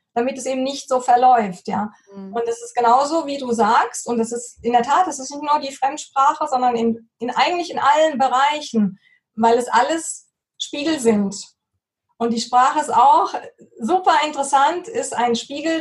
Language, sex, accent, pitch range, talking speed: German, female, German, 230-275 Hz, 180 wpm